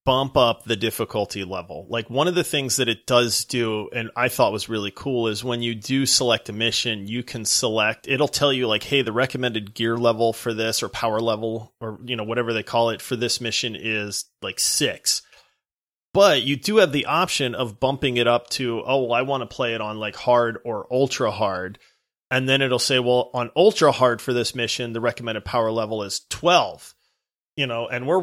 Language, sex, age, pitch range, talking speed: English, male, 30-49, 115-135 Hz, 215 wpm